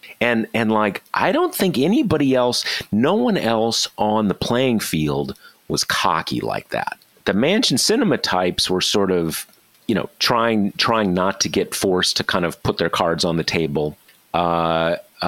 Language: English